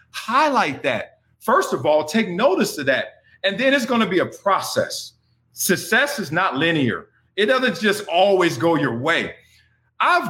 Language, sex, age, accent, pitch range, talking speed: English, male, 40-59, American, 155-220 Hz, 170 wpm